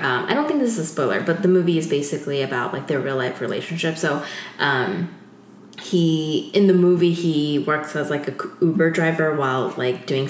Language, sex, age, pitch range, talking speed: English, female, 20-39, 135-185 Hz, 200 wpm